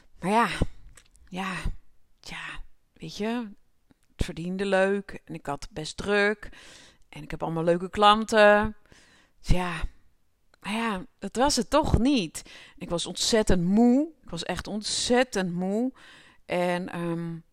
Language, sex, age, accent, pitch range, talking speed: Dutch, female, 30-49, Dutch, 175-215 Hz, 135 wpm